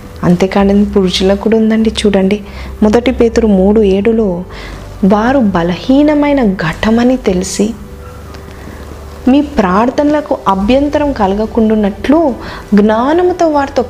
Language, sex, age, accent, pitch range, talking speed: Telugu, female, 20-39, native, 175-225 Hz, 80 wpm